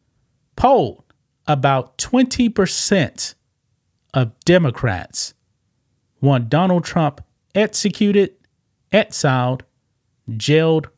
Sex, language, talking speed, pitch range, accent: male, English, 65 wpm, 115-145 Hz, American